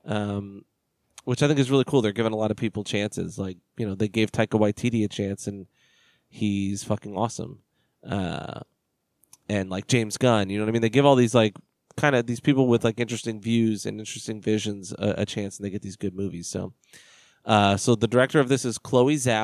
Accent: American